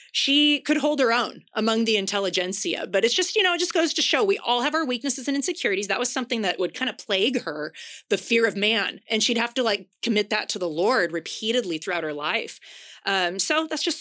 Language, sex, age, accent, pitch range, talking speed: English, female, 30-49, American, 180-265 Hz, 240 wpm